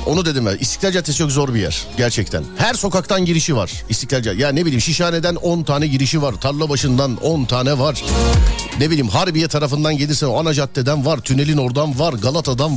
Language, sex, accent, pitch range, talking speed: Turkish, male, native, 120-175 Hz, 195 wpm